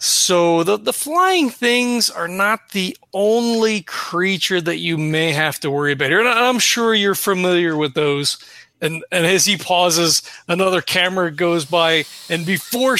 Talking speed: 160 wpm